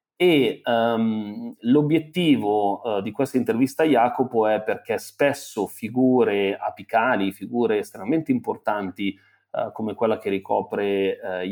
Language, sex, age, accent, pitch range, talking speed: Italian, male, 30-49, native, 100-120 Hz, 120 wpm